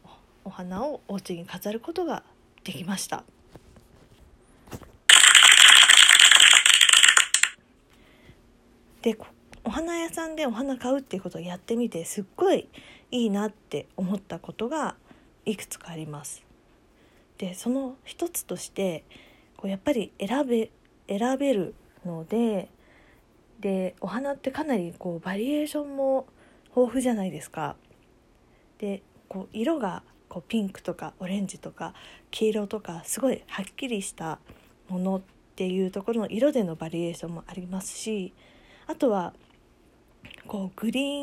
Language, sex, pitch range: Japanese, female, 185-250 Hz